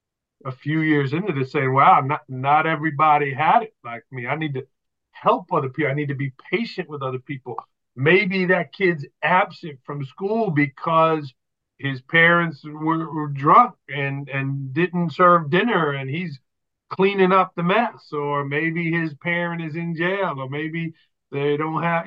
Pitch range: 135-165 Hz